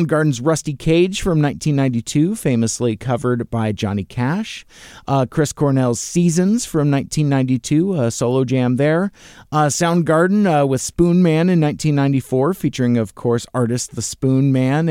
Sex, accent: male, American